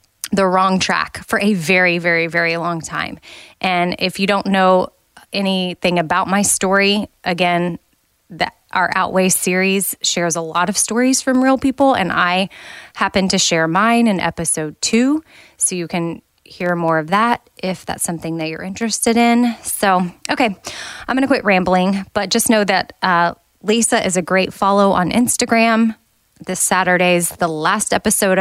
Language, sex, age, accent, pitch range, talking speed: English, female, 20-39, American, 170-210 Hz, 165 wpm